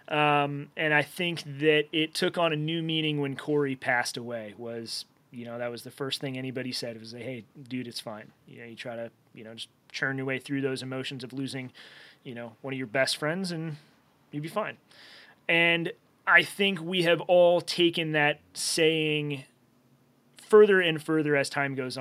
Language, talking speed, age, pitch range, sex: English, 200 wpm, 30-49, 135-165 Hz, male